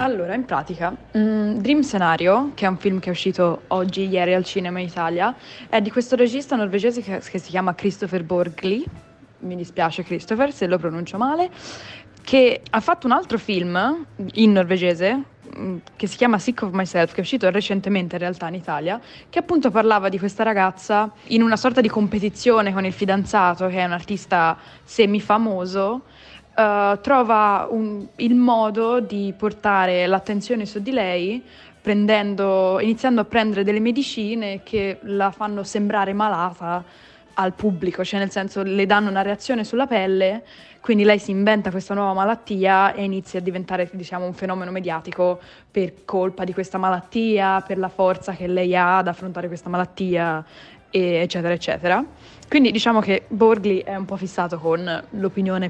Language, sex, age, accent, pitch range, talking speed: Italian, female, 20-39, native, 180-215 Hz, 165 wpm